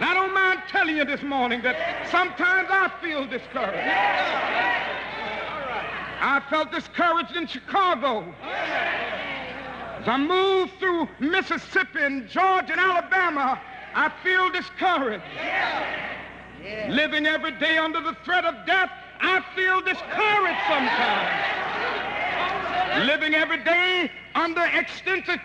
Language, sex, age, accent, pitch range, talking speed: English, male, 60-79, American, 285-370 Hz, 110 wpm